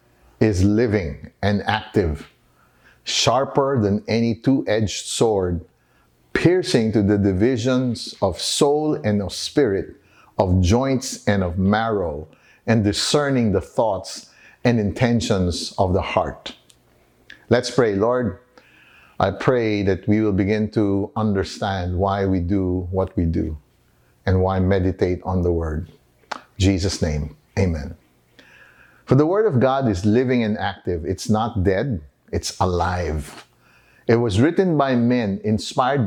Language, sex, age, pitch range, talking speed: English, male, 50-69, 95-115 Hz, 130 wpm